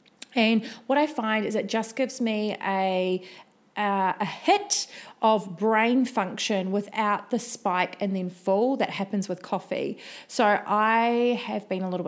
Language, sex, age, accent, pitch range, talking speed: English, female, 30-49, Australian, 180-225 Hz, 160 wpm